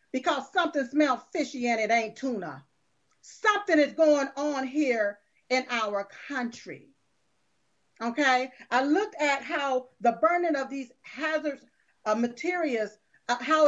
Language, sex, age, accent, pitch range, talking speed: English, female, 40-59, American, 245-330 Hz, 130 wpm